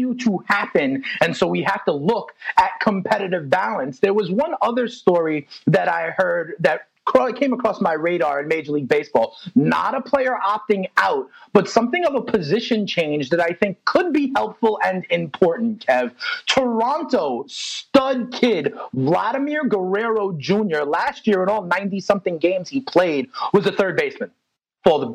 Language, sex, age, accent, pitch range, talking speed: English, male, 30-49, American, 185-245 Hz, 165 wpm